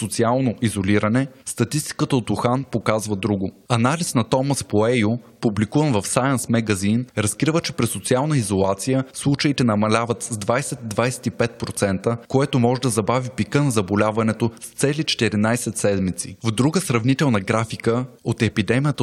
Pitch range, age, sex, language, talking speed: 110-130 Hz, 20-39, male, Bulgarian, 130 wpm